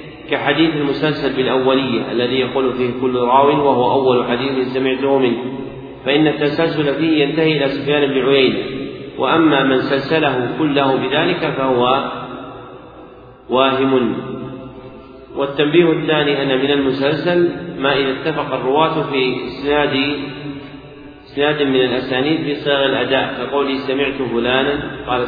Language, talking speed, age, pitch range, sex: Arabic, 115 wpm, 40-59, 130-155 Hz, male